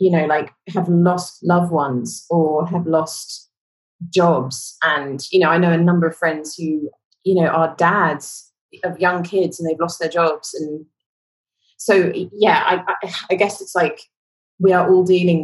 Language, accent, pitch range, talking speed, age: English, British, 160-185 Hz, 175 wpm, 20-39